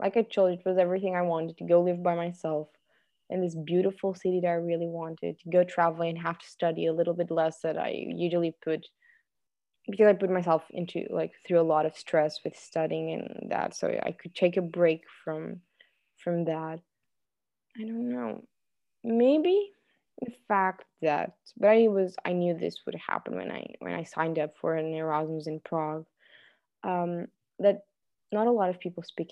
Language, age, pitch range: English, 20-39, 160-185 Hz